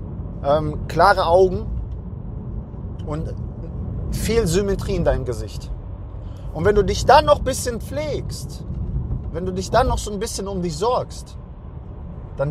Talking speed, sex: 145 wpm, male